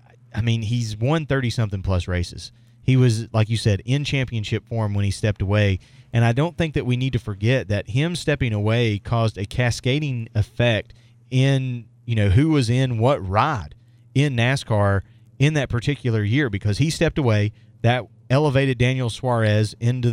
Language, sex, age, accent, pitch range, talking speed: English, male, 30-49, American, 105-125 Hz, 175 wpm